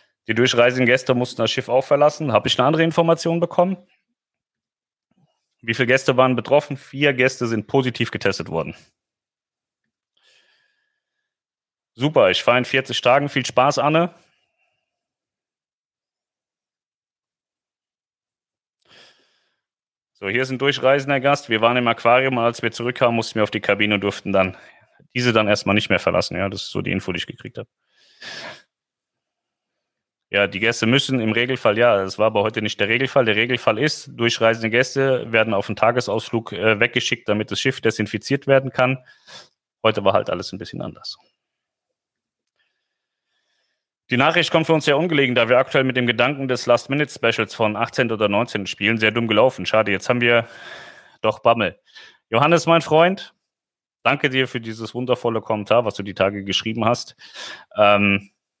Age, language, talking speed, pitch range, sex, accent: 30-49, German, 155 wpm, 110-140 Hz, male, German